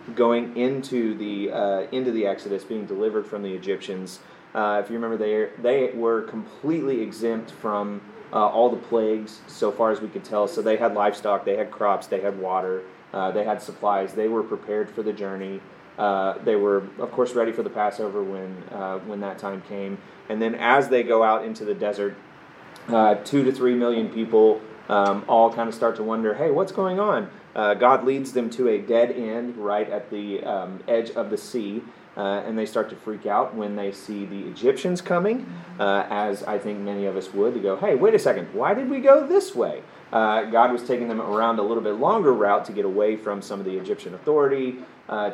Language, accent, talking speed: English, American, 215 wpm